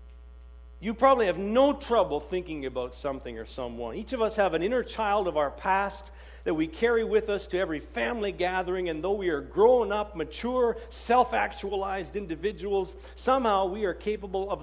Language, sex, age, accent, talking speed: English, male, 50-69, American, 170 wpm